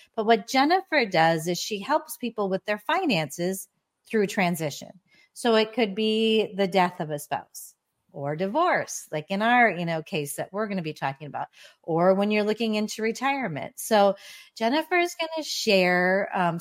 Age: 40-59